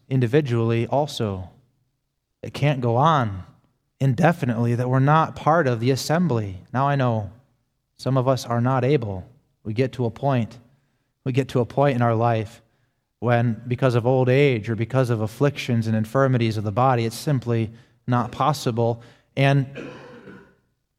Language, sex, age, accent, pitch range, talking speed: English, male, 20-39, American, 120-140 Hz, 155 wpm